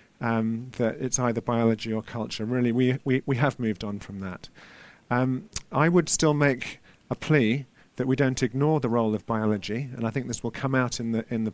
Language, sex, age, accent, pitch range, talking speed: English, male, 40-59, British, 115-140 Hz, 220 wpm